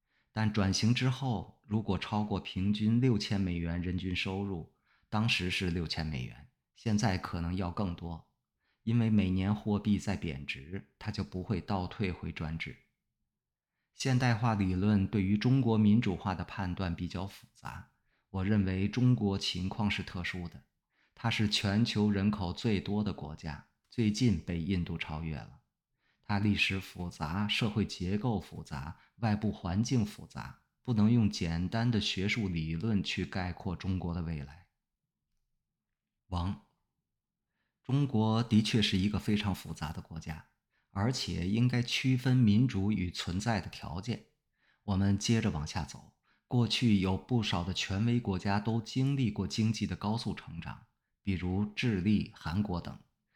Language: English